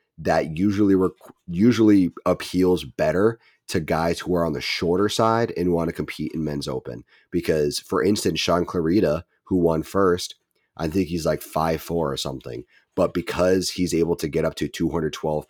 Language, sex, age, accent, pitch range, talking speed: English, male, 30-49, American, 80-90 Hz, 175 wpm